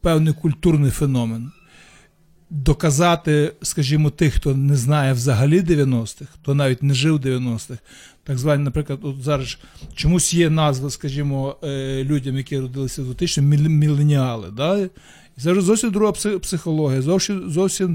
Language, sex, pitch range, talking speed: Ukrainian, male, 140-170 Hz, 125 wpm